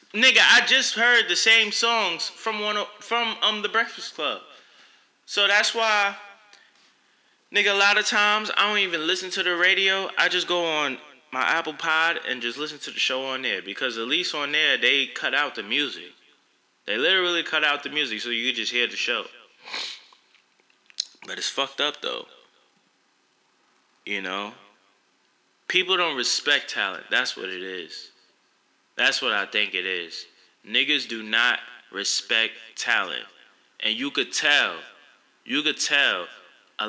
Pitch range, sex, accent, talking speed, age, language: 150-225 Hz, male, American, 165 wpm, 20-39, English